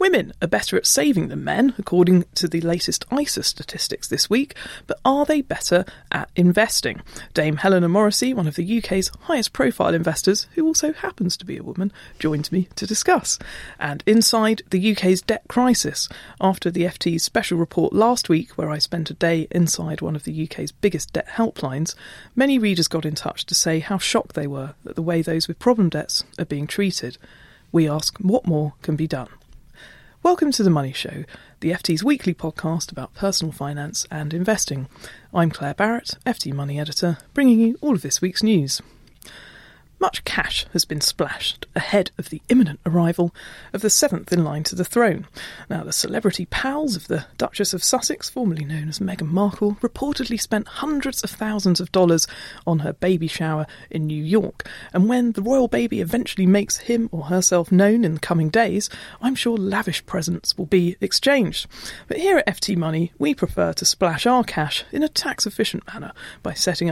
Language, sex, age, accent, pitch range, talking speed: English, female, 30-49, British, 160-225 Hz, 185 wpm